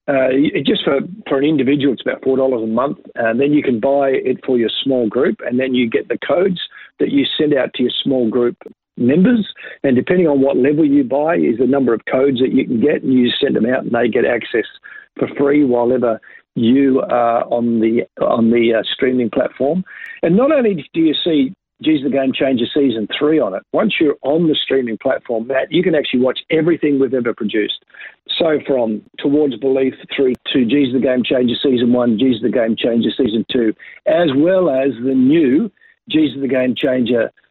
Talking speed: 210 wpm